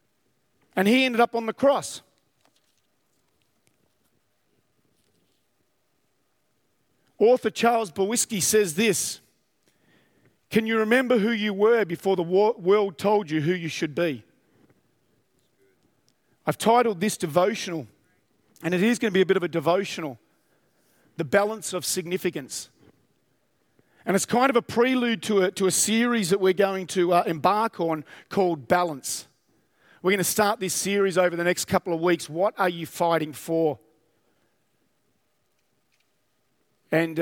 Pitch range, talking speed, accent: 160-200 Hz, 135 wpm, Australian